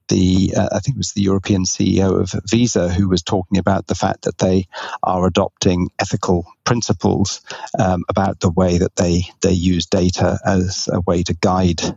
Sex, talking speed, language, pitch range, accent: male, 185 wpm, English, 95-105 Hz, British